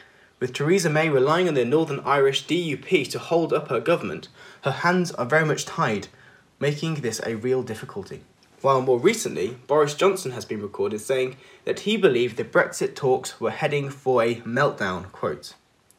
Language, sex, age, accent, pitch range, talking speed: English, male, 10-29, British, 125-170 Hz, 175 wpm